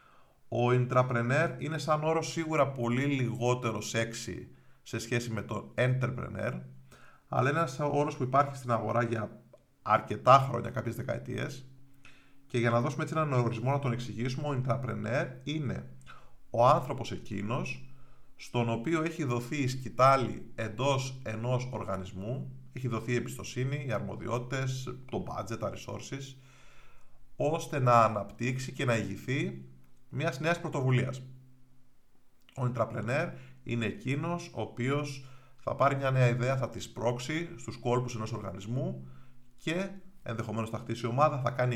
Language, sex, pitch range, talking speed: Greek, male, 115-135 Hz, 140 wpm